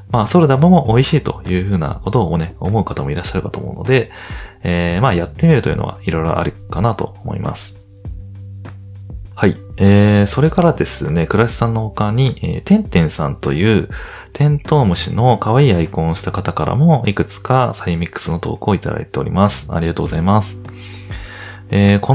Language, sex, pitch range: Japanese, male, 90-125 Hz